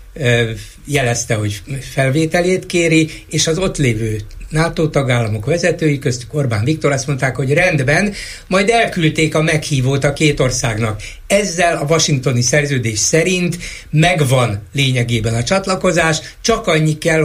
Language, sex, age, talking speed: Hungarian, male, 60-79, 130 wpm